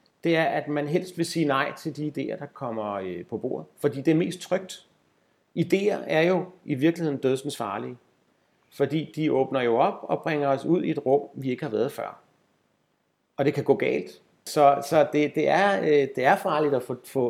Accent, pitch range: native, 140-185 Hz